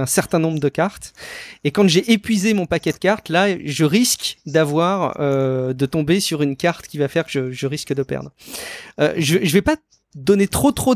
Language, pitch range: English, 150-195 Hz